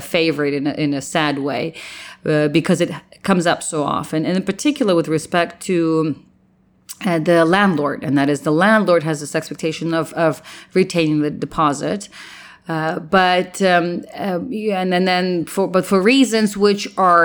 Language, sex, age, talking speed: English, female, 30-49, 170 wpm